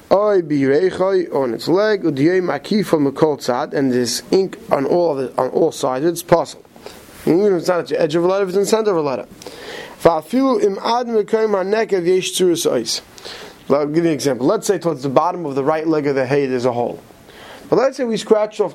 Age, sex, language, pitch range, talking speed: 30-49, male, English, 150-210 Hz, 190 wpm